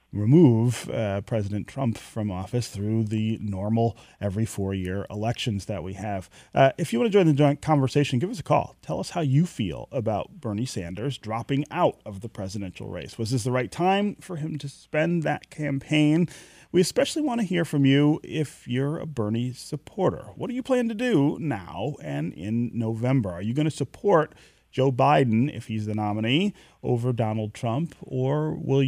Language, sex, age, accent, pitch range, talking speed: English, male, 30-49, American, 105-140 Hz, 190 wpm